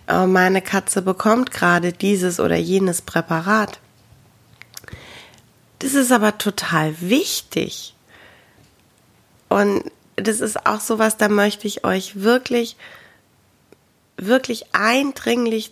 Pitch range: 185-245 Hz